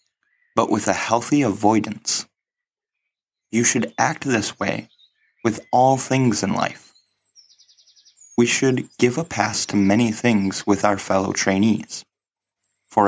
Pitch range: 100-130 Hz